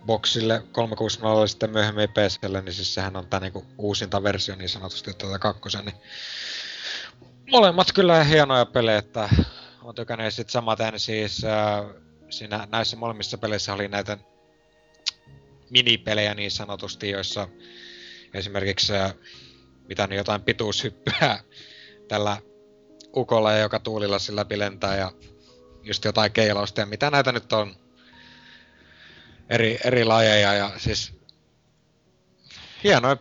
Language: Finnish